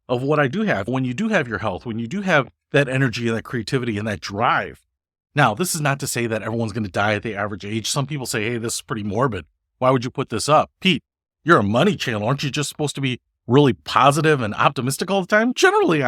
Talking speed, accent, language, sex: 265 wpm, American, English, male